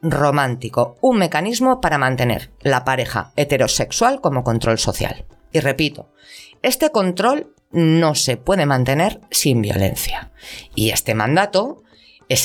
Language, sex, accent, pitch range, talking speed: Spanish, female, Spanish, 125-180 Hz, 120 wpm